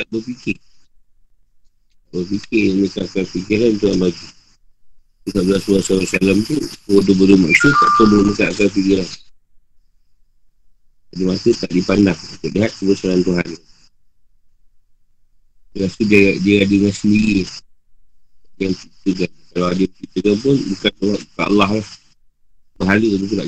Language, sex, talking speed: Malay, male, 120 wpm